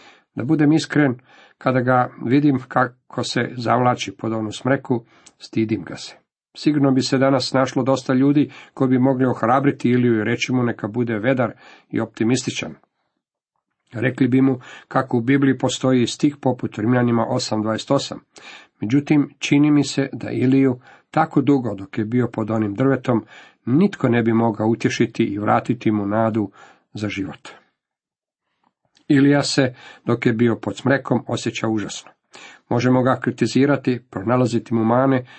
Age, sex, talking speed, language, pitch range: 50-69, male, 145 wpm, Croatian, 115-140 Hz